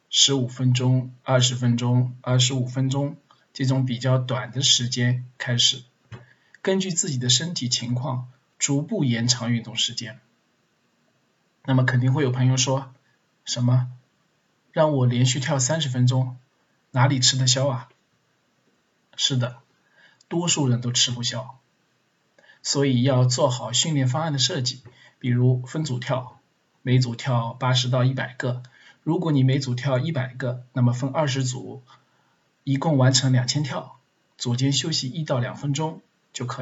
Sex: male